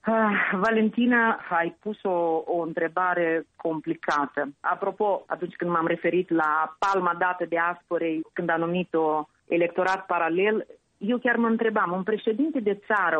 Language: Romanian